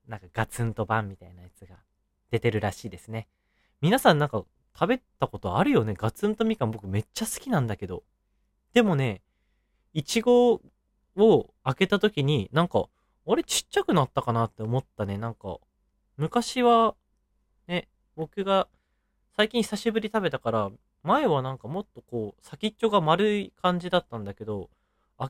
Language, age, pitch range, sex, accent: Japanese, 20-39, 110-180 Hz, male, native